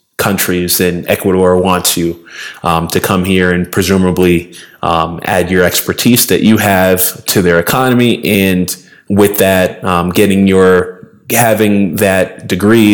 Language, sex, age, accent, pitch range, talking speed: English, male, 20-39, American, 90-100 Hz, 140 wpm